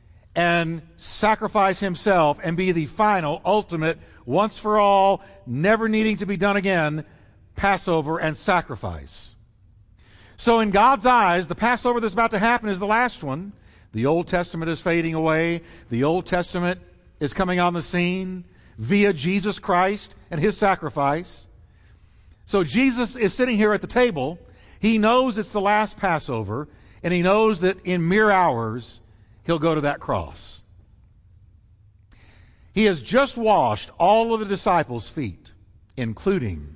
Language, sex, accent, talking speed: English, male, American, 145 wpm